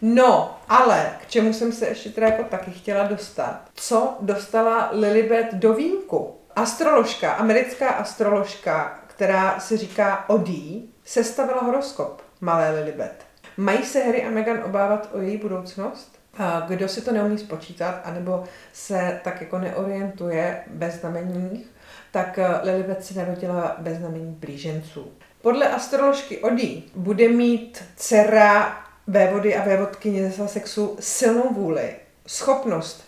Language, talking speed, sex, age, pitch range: Czech, 125 wpm, female, 40-59, 190-230 Hz